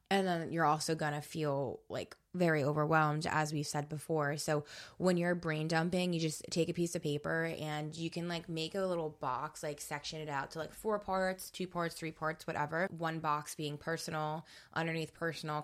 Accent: American